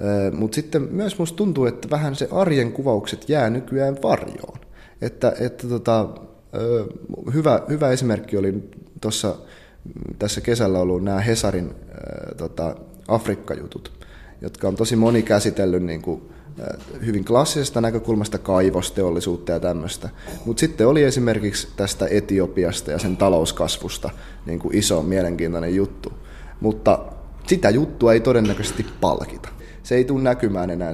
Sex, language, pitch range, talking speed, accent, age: male, Finnish, 90-120 Hz, 130 wpm, native, 30-49